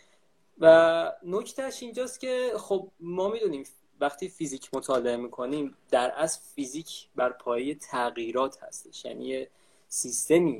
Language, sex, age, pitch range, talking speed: Persian, male, 20-39, 135-190 Hz, 115 wpm